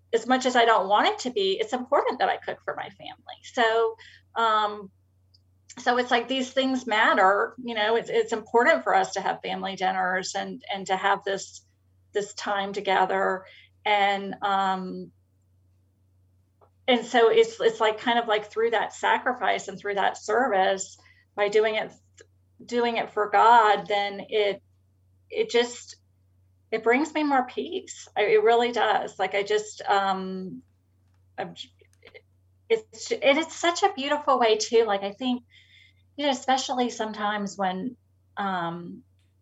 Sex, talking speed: female, 150 wpm